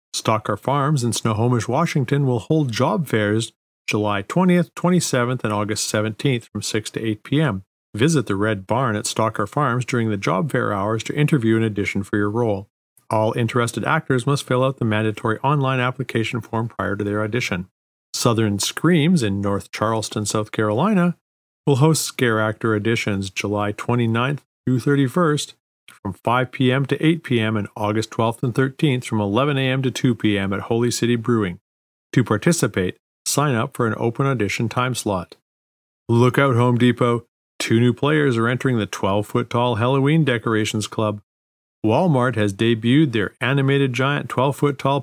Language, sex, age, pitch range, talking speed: English, male, 50-69, 105-135 Hz, 165 wpm